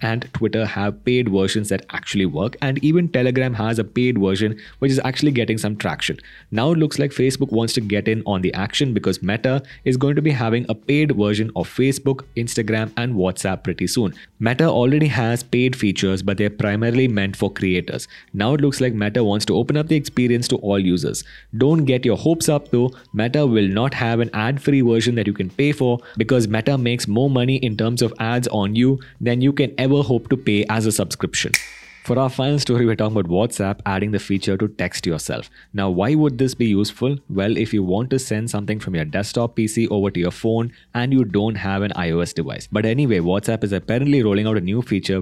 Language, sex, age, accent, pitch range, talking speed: English, male, 20-39, Indian, 100-130 Hz, 220 wpm